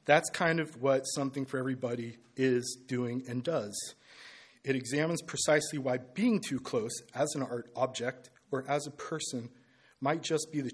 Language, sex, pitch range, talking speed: English, male, 120-145 Hz, 170 wpm